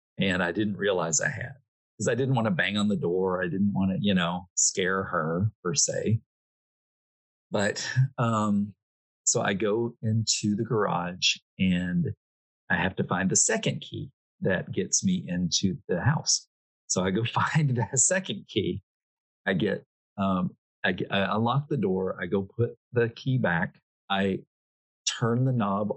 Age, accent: 40-59, American